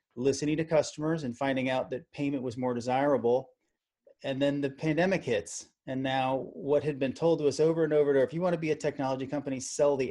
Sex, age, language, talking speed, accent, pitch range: male, 30-49, English, 220 wpm, American, 125-155 Hz